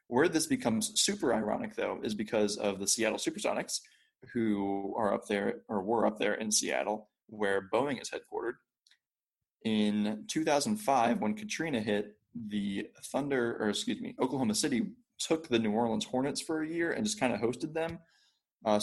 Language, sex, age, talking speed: English, male, 20-39, 170 wpm